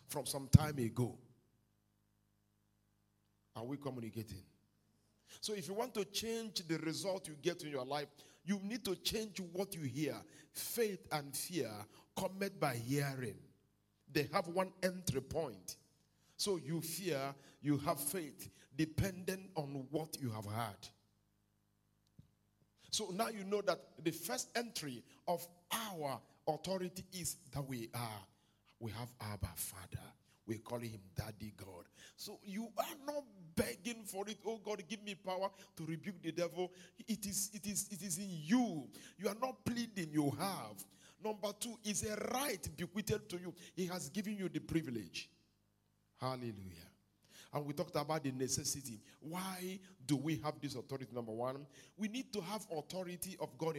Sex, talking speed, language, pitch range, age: male, 155 wpm, English, 120-190 Hz, 50-69